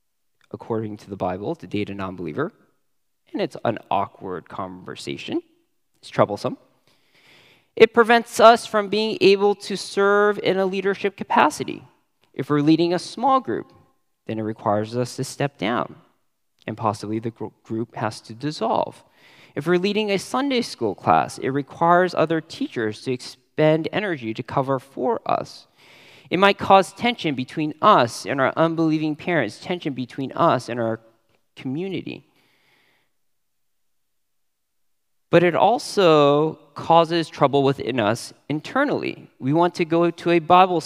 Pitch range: 125-180 Hz